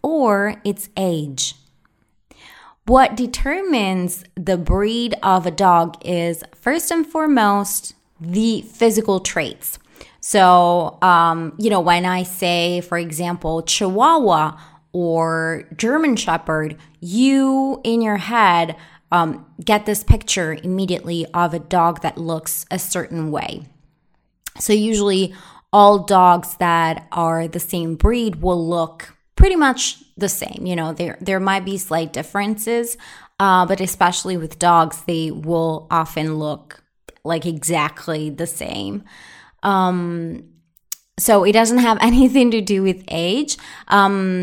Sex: female